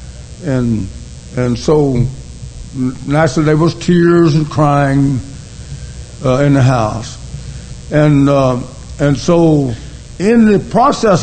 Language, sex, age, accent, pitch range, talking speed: English, male, 60-79, American, 125-160 Hz, 105 wpm